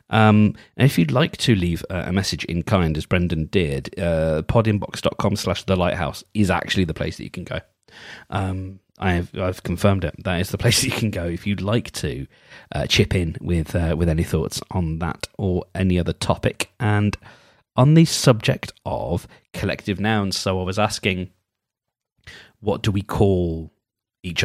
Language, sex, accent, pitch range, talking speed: English, male, British, 90-110 Hz, 185 wpm